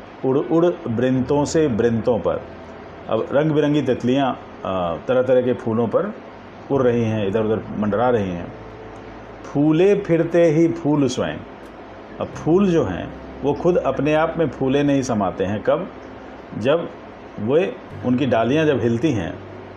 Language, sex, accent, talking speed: Hindi, male, native, 150 wpm